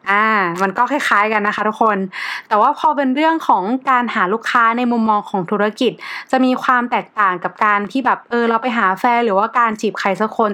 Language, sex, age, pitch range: Thai, female, 20-39, 205-260 Hz